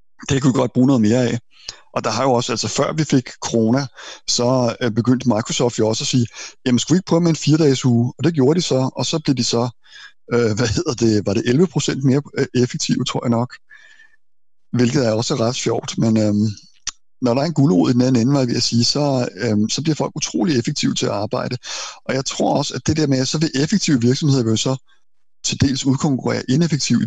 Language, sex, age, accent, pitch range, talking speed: Danish, male, 60-79, native, 110-135 Hz, 230 wpm